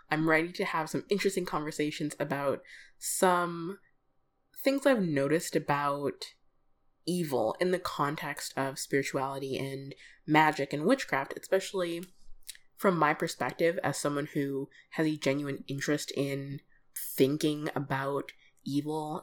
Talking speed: 120 wpm